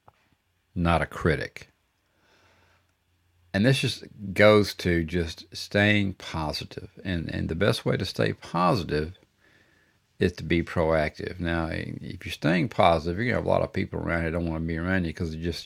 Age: 50-69